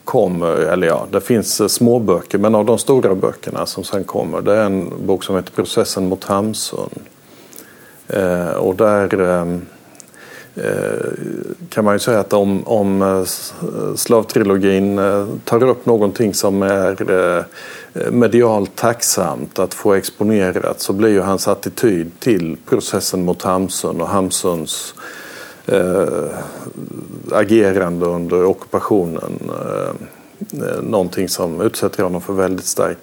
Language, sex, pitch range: Swedish, male, 95-110 Hz